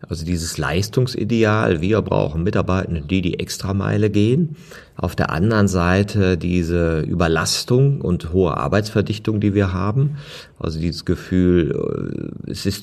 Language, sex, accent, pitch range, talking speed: German, male, German, 90-120 Hz, 125 wpm